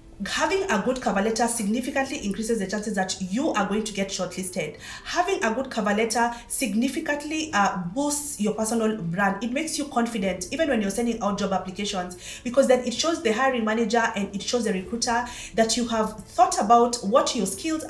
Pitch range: 205-270 Hz